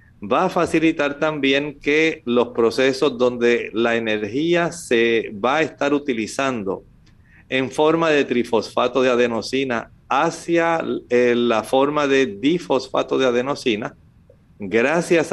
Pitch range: 120-155 Hz